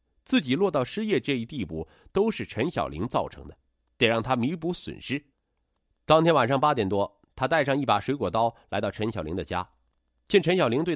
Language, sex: Chinese, male